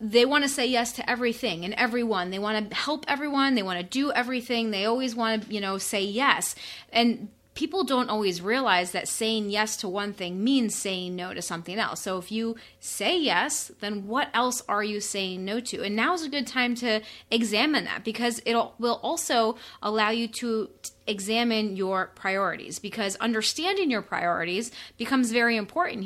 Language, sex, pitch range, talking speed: English, female, 200-240 Hz, 190 wpm